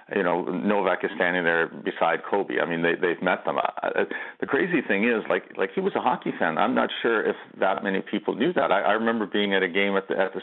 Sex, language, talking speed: male, English, 270 wpm